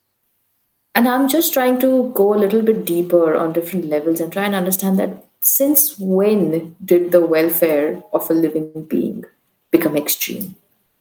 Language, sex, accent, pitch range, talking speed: English, female, Indian, 155-190 Hz, 160 wpm